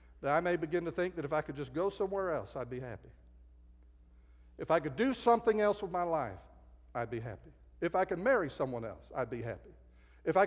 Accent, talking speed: American, 230 wpm